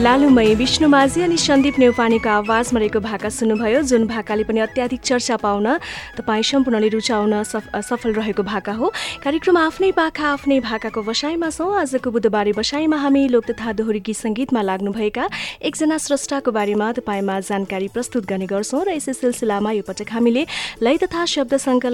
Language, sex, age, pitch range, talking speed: English, female, 30-49, 210-275 Hz, 125 wpm